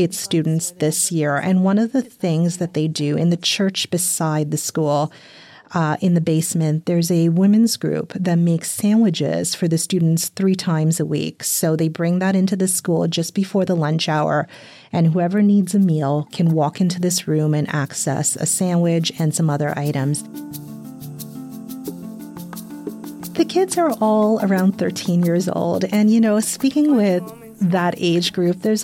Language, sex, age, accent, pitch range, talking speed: English, female, 30-49, American, 165-210 Hz, 170 wpm